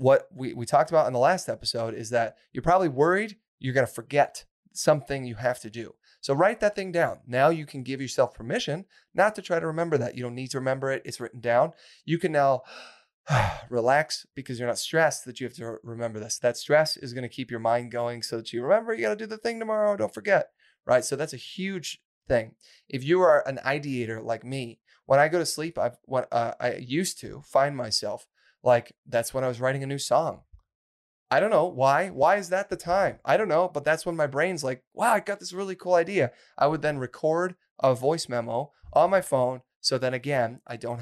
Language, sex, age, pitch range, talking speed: English, male, 30-49, 120-165 Hz, 230 wpm